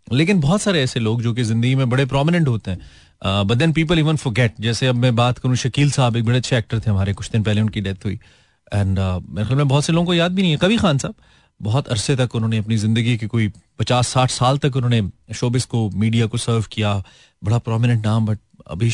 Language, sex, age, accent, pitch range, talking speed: Hindi, male, 30-49, native, 110-145 Hz, 240 wpm